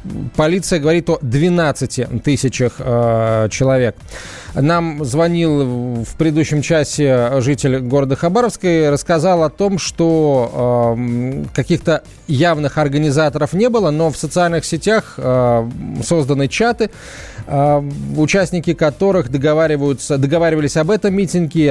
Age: 20-39